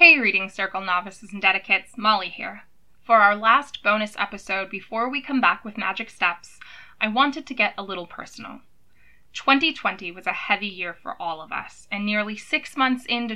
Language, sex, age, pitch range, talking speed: English, female, 20-39, 195-230 Hz, 185 wpm